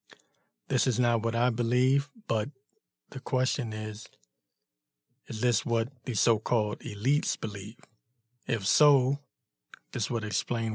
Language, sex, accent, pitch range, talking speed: English, male, American, 110-135 Hz, 125 wpm